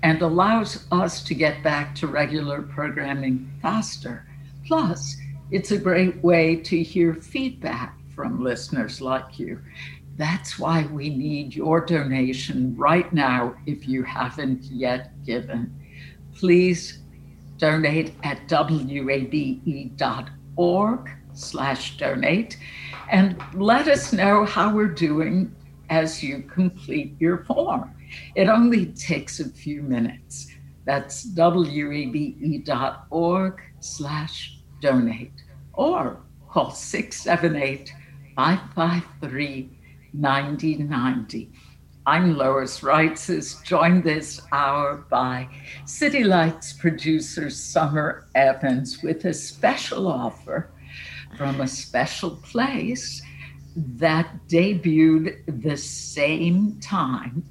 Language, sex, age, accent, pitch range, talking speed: English, female, 60-79, American, 130-170 Hz, 95 wpm